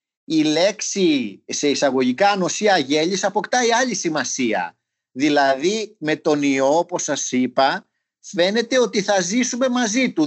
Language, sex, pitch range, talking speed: Greek, male, 145-220 Hz, 130 wpm